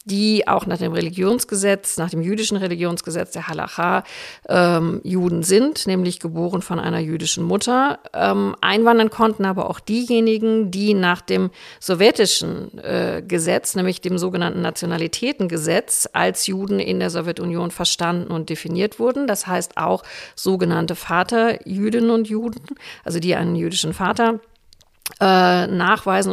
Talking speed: 135 wpm